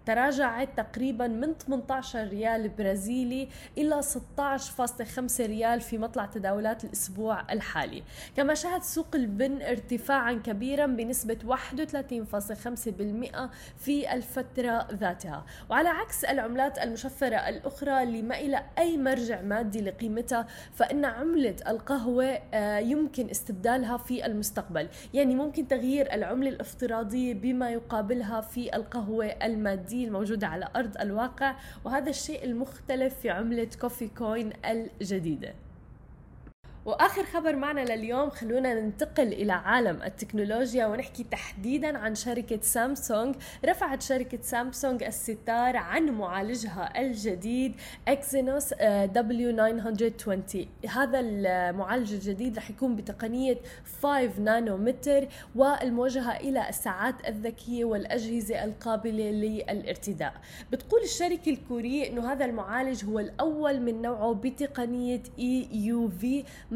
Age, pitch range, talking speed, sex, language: 10-29, 220-270 Hz, 105 wpm, female, Arabic